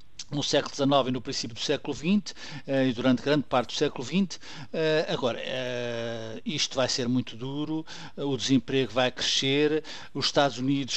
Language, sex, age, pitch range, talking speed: Portuguese, male, 50-69, 130-145 Hz, 180 wpm